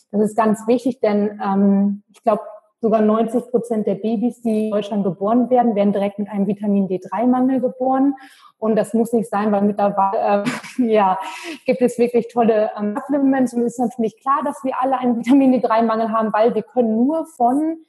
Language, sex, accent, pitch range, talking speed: German, female, German, 210-255 Hz, 185 wpm